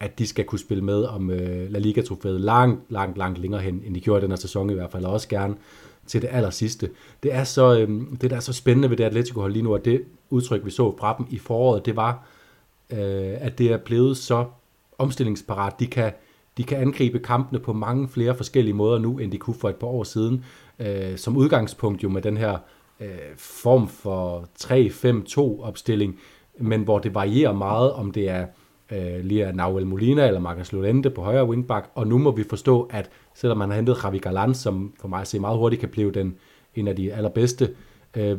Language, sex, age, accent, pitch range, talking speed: Danish, male, 30-49, native, 100-125 Hz, 215 wpm